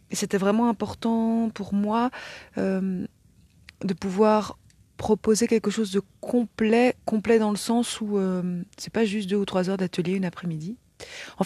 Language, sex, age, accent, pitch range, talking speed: French, female, 30-49, French, 165-210 Hz, 170 wpm